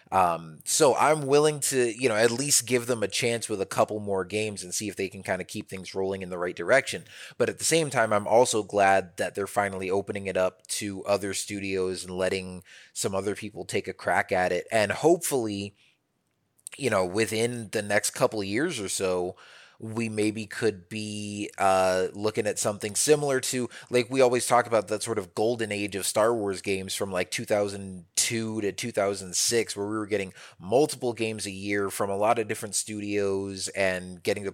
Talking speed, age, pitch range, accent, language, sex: 205 wpm, 20-39, 95-115 Hz, American, English, male